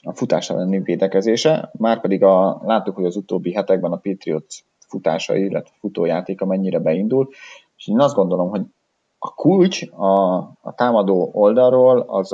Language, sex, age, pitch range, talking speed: Hungarian, male, 30-49, 85-100 Hz, 145 wpm